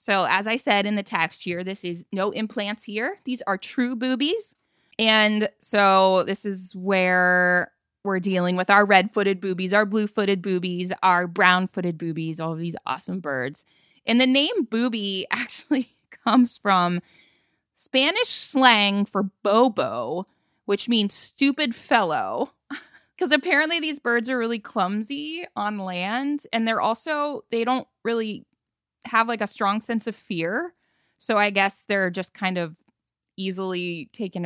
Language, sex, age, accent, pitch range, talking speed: English, female, 20-39, American, 190-260 Hz, 145 wpm